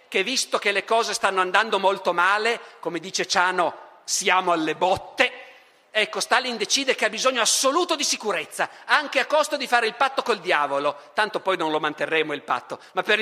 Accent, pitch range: native, 195-250 Hz